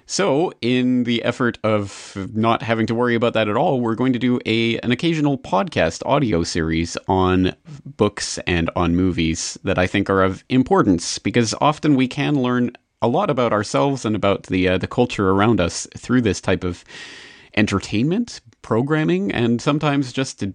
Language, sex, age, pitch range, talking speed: English, male, 30-49, 95-125 Hz, 175 wpm